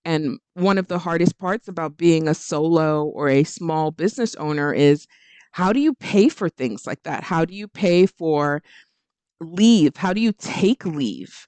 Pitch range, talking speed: 155-195 Hz, 185 wpm